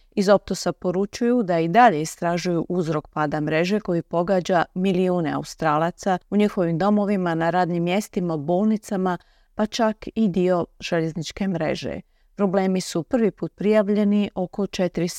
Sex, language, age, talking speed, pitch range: female, Croatian, 40-59, 135 wpm, 165-205 Hz